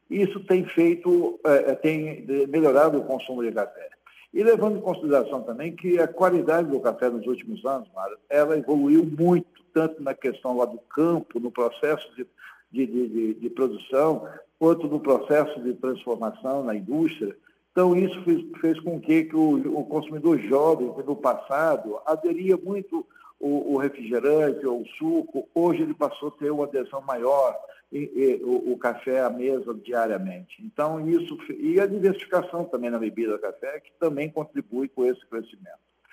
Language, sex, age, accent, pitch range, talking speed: Portuguese, male, 60-79, Brazilian, 130-195 Hz, 165 wpm